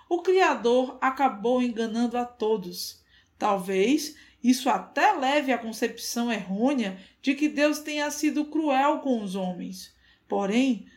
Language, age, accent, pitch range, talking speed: Portuguese, 20-39, Brazilian, 215-280 Hz, 125 wpm